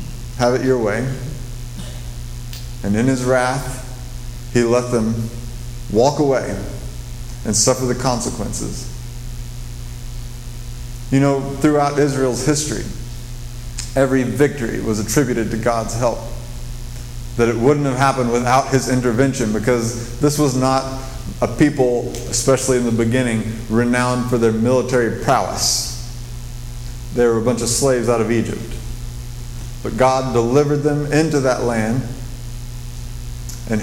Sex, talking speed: male, 120 wpm